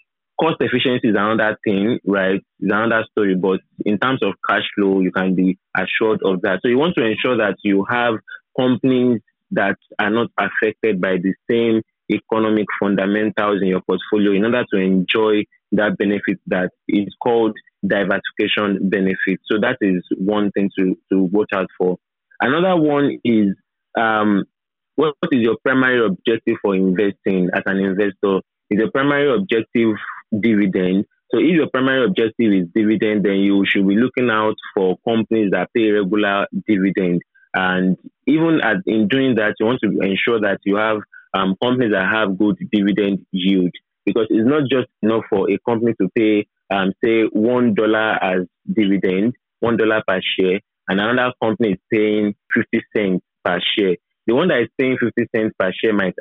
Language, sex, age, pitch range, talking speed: English, male, 20-39, 95-115 Hz, 175 wpm